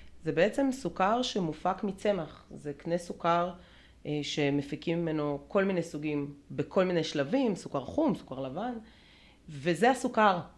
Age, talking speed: 30-49, 125 wpm